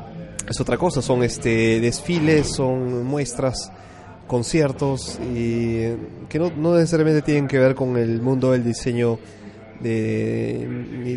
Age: 20-39